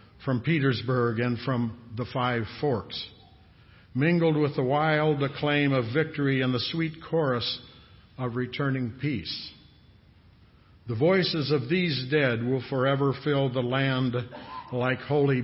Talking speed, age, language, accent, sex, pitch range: 130 wpm, 60-79, English, American, male, 115-150 Hz